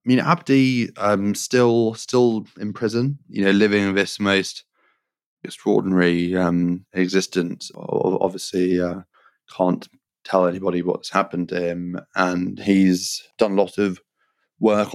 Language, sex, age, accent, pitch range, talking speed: English, male, 20-39, British, 90-100 Hz, 135 wpm